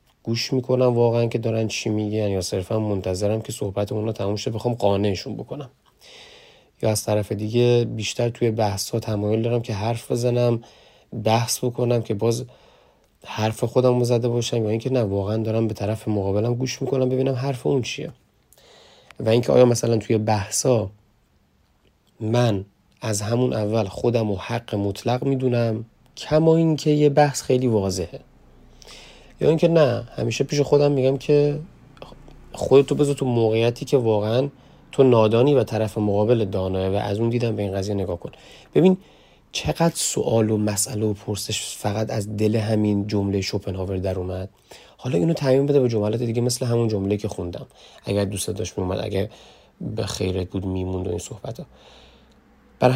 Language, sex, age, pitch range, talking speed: Persian, male, 30-49, 105-125 Hz, 165 wpm